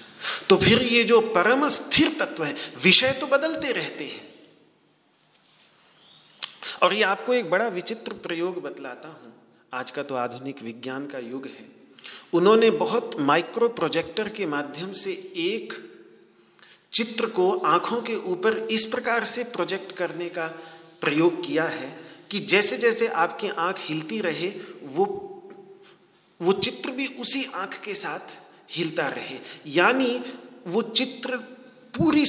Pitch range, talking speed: 175-260 Hz, 135 wpm